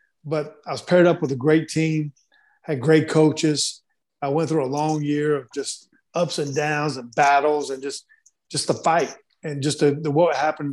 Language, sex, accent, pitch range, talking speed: English, male, American, 140-155 Hz, 200 wpm